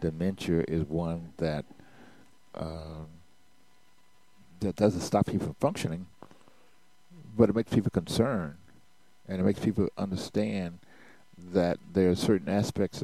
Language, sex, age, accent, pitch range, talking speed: English, male, 60-79, American, 80-95 Hz, 120 wpm